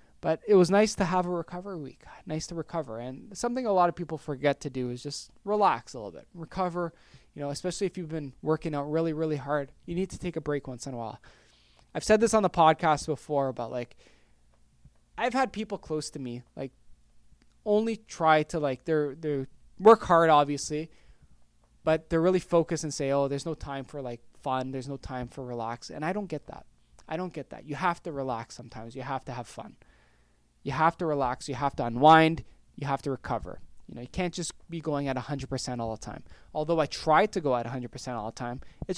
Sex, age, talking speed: male, 20-39, 225 wpm